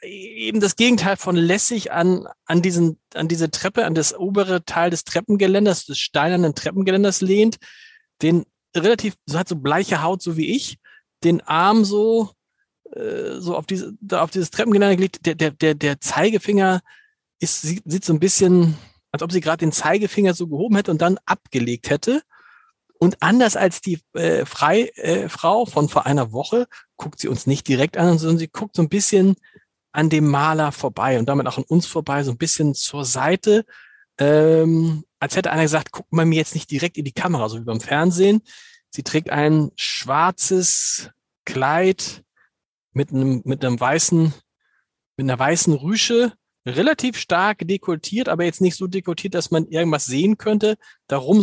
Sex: male